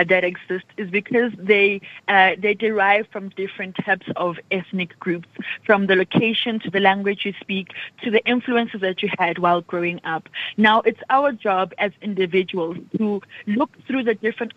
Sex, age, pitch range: female, 30-49, 190-230 Hz